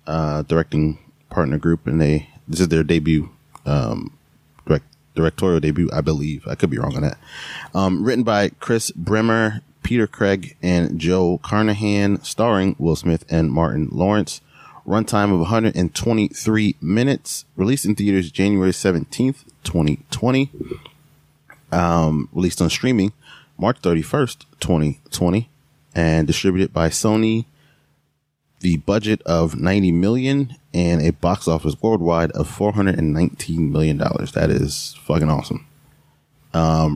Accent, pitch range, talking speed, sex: American, 80-110 Hz, 125 wpm, male